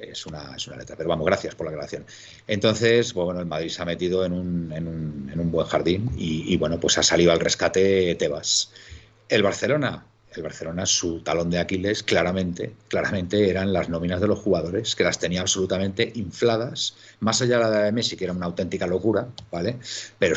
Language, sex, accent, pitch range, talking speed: Spanish, male, Spanish, 90-110 Hz, 190 wpm